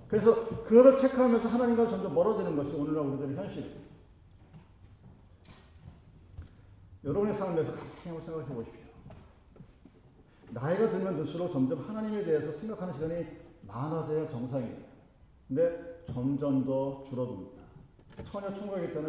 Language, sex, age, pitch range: Korean, male, 40-59, 125-185 Hz